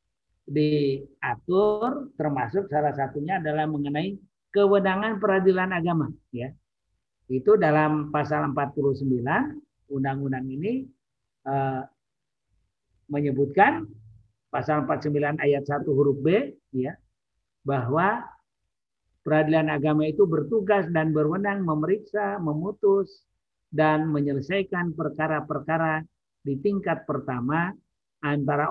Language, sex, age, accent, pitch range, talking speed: Indonesian, male, 50-69, native, 130-170 Hz, 85 wpm